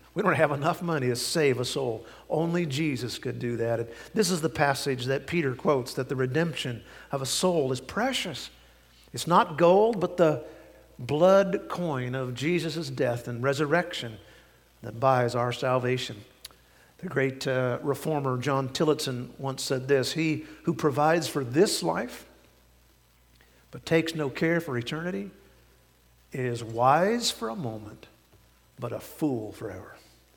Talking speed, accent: 150 wpm, American